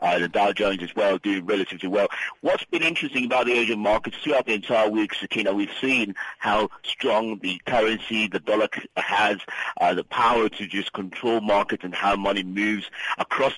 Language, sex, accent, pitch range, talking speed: English, male, British, 95-115 Hz, 185 wpm